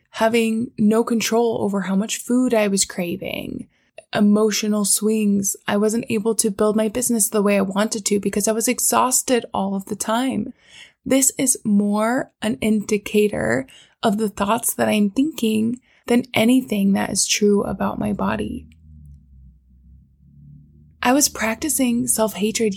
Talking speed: 150 wpm